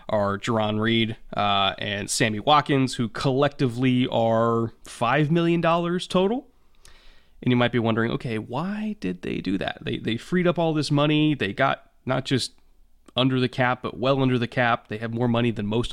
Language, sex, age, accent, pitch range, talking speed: English, male, 20-39, American, 110-130 Hz, 185 wpm